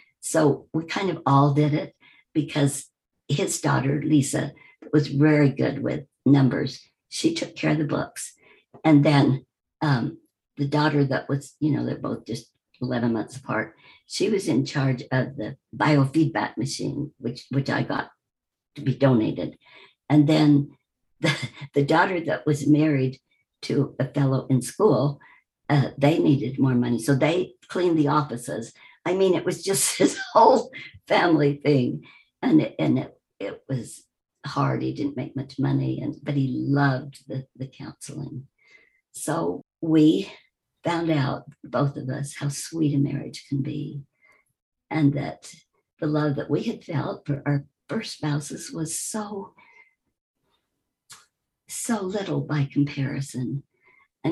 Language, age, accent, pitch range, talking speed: English, 60-79, American, 135-155 Hz, 150 wpm